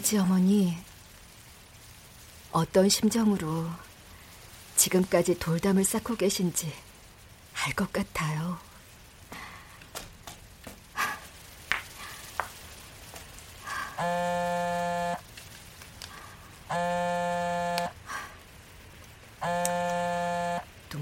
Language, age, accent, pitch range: Korean, 40-59, native, 140-180 Hz